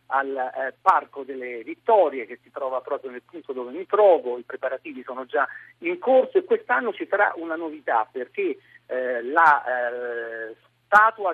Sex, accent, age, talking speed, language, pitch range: male, native, 50-69, 165 wpm, Italian, 135-215 Hz